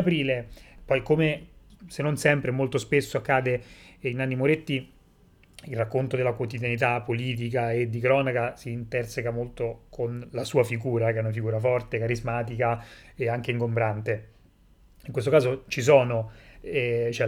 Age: 30-49